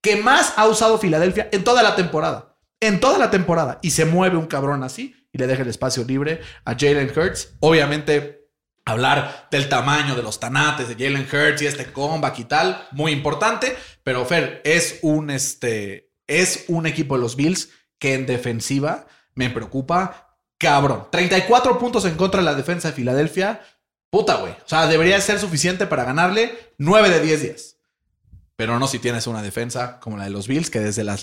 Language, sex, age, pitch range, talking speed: Spanish, male, 30-49, 120-165 Hz, 185 wpm